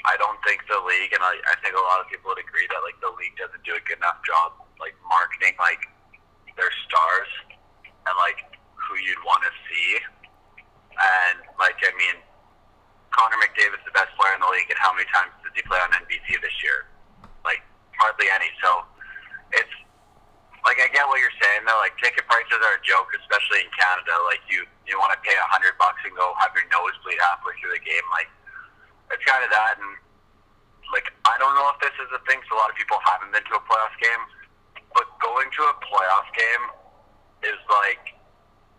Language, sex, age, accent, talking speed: English, male, 30-49, American, 205 wpm